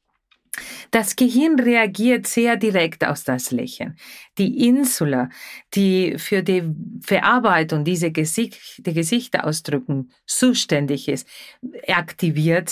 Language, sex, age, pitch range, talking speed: German, female, 40-59, 160-220 Hz, 105 wpm